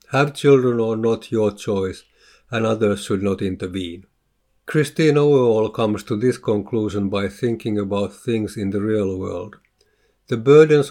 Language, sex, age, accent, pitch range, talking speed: English, male, 50-69, Finnish, 100-125 Hz, 150 wpm